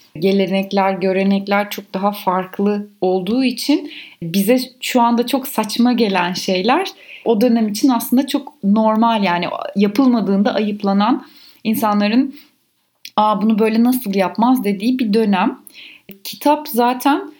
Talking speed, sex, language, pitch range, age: 115 wpm, female, Turkish, 195-245 Hz, 30-49